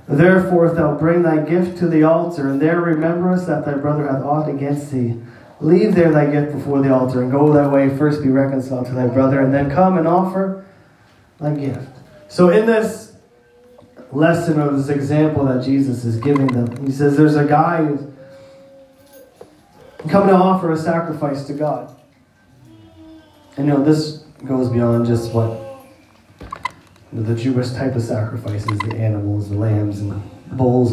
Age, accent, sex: 30-49, American, male